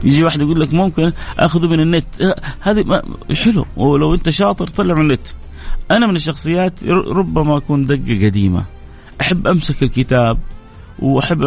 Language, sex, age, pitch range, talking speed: Arabic, male, 30-49, 120-155 Hz, 140 wpm